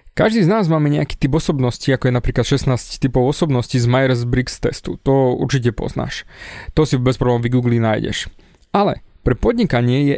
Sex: male